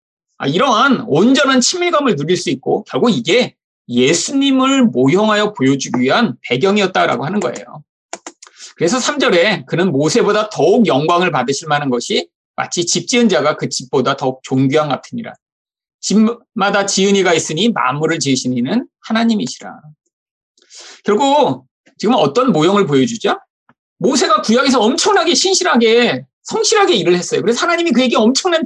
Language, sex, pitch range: Korean, male, 180-300 Hz